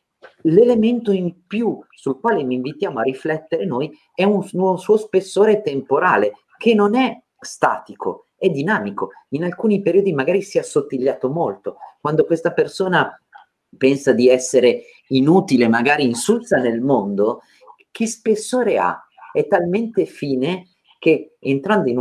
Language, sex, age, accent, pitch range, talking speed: Italian, male, 40-59, native, 135-220 Hz, 135 wpm